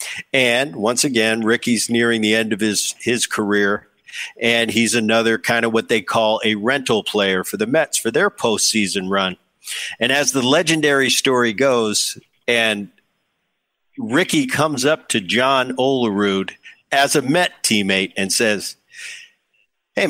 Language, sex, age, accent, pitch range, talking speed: English, male, 50-69, American, 110-140 Hz, 145 wpm